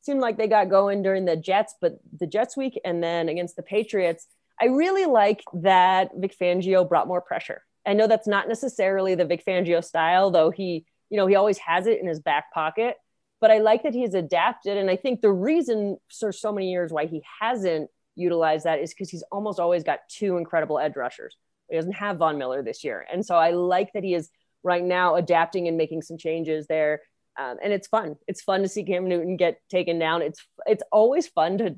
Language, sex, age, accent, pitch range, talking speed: English, female, 30-49, American, 165-215 Hz, 225 wpm